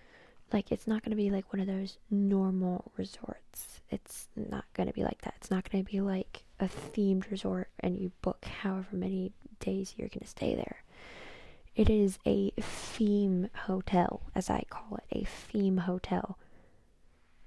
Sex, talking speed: female, 175 wpm